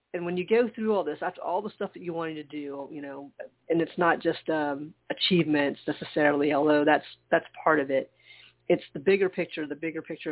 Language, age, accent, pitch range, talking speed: English, 40-59, American, 145-180 Hz, 220 wpm